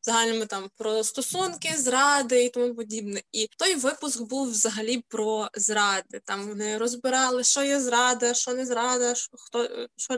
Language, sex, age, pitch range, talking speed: Ukrainian, female, 20-39, 220-260 Hz, 155 wpm